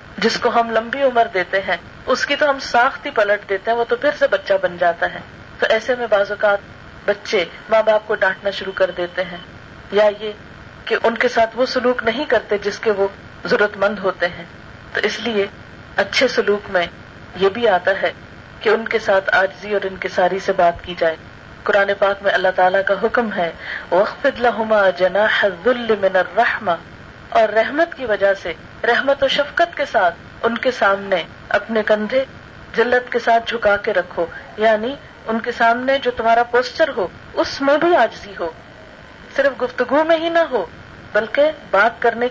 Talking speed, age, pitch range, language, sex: 180 wpm, 40-59, 195-255 Hz, Urdu, female